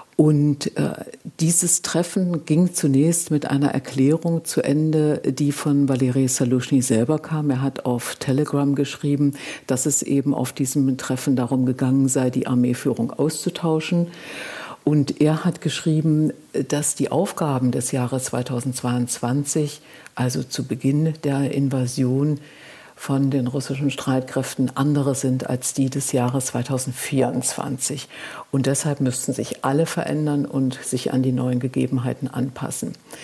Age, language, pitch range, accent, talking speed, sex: 60-79, German, 130-150 Hz, German, 130 wpm, female